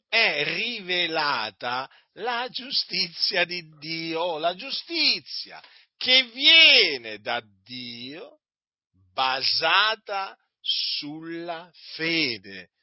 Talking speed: 70 wpm